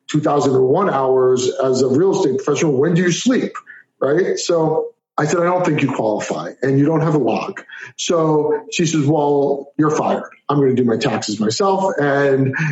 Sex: male